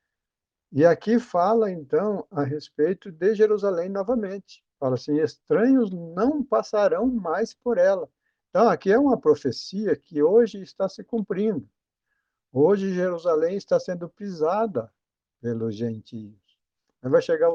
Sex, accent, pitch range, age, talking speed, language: male, Brazilian, 130-195 Hz, 60-79, 125 wpm, Portuguese